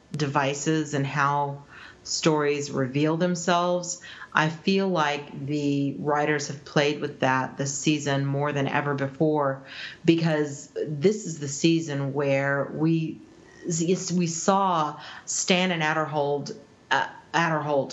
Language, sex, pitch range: English, female, 145-180 Hz